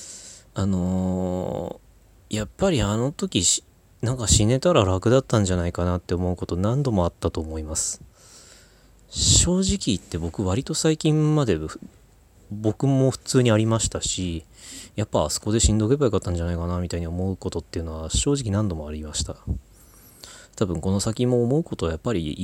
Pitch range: 85-105 Hz